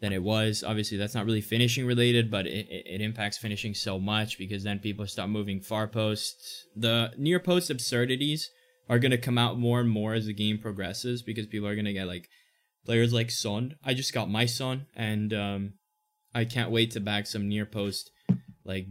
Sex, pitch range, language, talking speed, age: male, 100-120 Hz, English, 205 wpm, 20-39